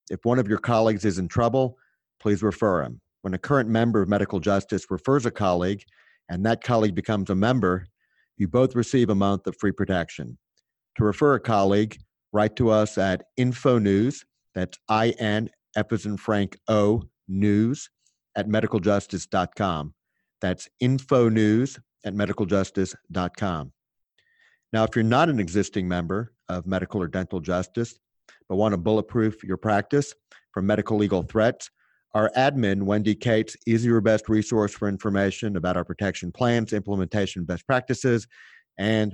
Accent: American